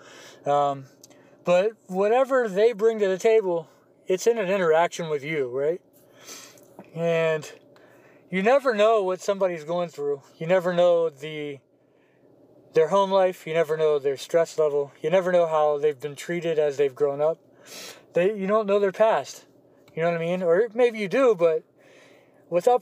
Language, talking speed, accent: English, 170 wpm, American